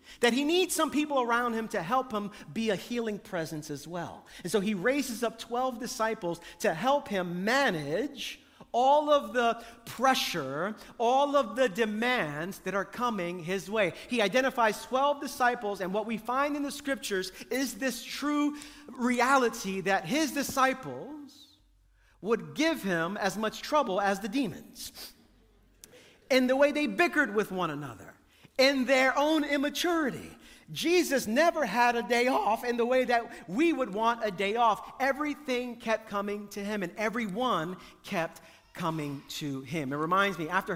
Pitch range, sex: 175-255 Hz, male